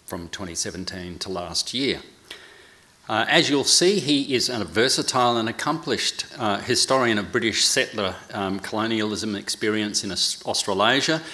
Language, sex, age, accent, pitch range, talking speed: English, male, 40-59, Australian, 95-130 Hz, 130 wpm